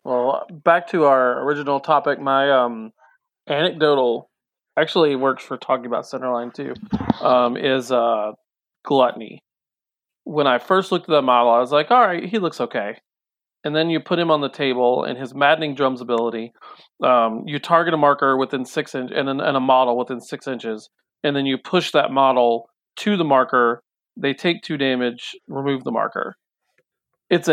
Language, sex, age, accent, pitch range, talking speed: English, male, 40-59, American, 130-165 Hz, 175 wpm